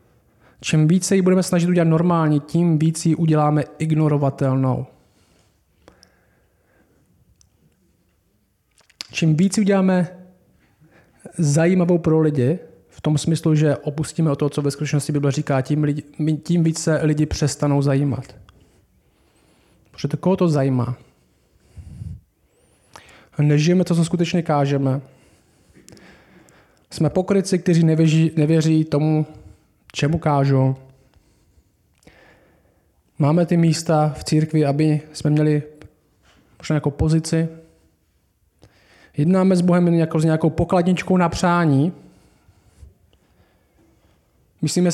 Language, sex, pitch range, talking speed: Czech, male, 125-170 Hz, 105 wpm